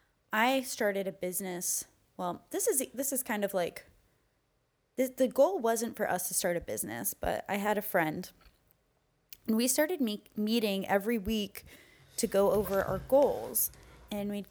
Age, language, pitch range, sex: 20-39, English, 190-235 Hz, female